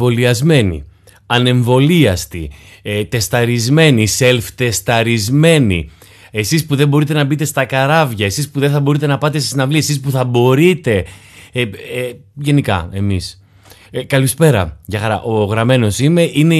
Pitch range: 100-140 Hz